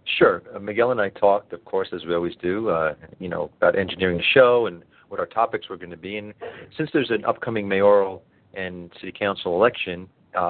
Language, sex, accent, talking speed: English, male, American, 215 wpm